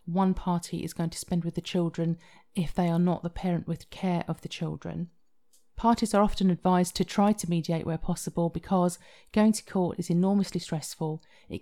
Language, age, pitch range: English, 40-59, 170-190 Hz